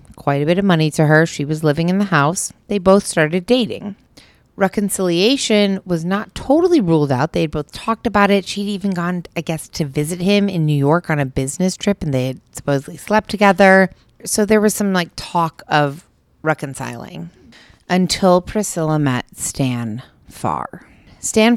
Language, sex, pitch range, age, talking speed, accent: English, female, 145-190 Hz, 30-49, 180 wpm, American